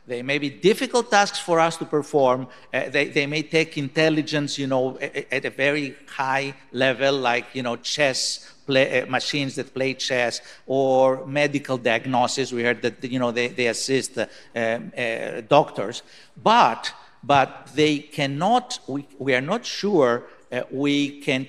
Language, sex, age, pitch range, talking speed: Greek, male, 60-79, 125-145 Hz, 160 wpm